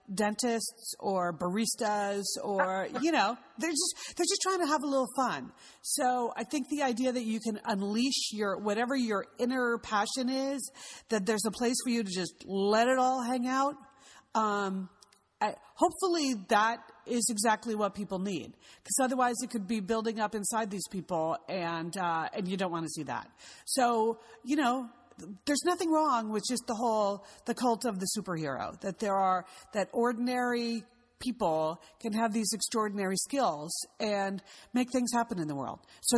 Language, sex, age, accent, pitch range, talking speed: English, female, 40-59, American, 195-250 Hz, 175 wpm